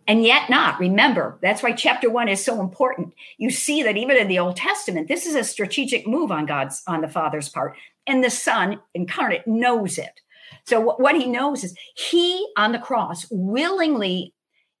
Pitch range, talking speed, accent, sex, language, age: 185-265 Hz, 185 wpm, American, female, English, 50-69